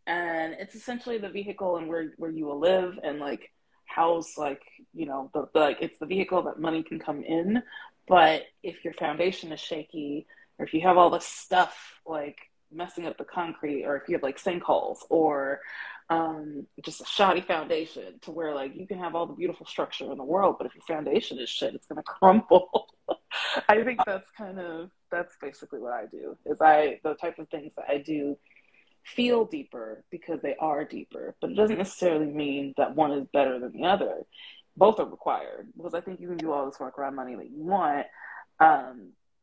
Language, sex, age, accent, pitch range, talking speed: English, female, 20-39, American, 155-185 Hz, 205 wpm